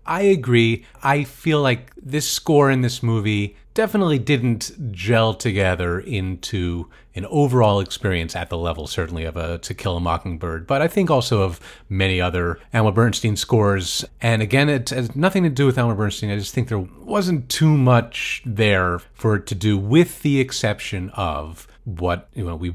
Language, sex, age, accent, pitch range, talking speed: English, male, 40-59, American, 90-120 Hz, 180 wpm